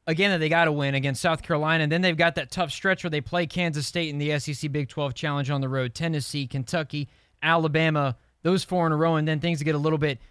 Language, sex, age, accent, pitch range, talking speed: English, male, 20-39, American, 140-175 Hz, 260 wpm